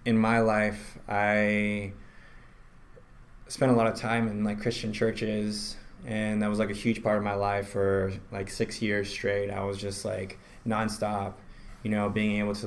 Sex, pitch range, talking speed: male, 105-110 Hz, 180 wpm